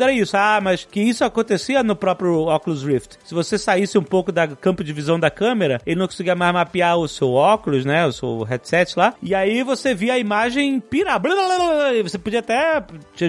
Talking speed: 210 wpm